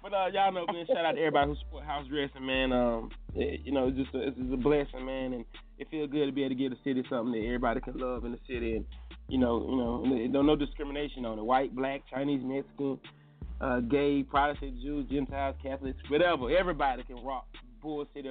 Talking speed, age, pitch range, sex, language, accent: 235 wpm, 20-39, 125-155 Hz, male, English, American